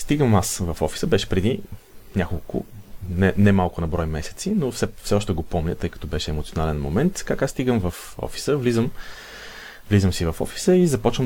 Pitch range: 90-115 Hz